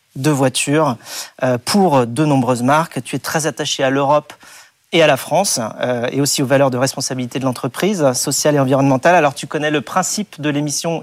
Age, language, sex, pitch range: 40-59, French, male, 130-155 Hz